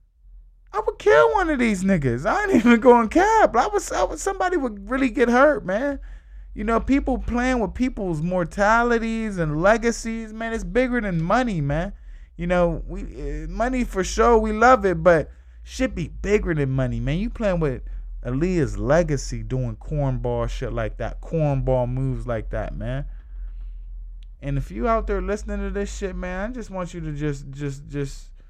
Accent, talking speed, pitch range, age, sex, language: American, 180 wpm, 125-200 Hz, 20-39, male, English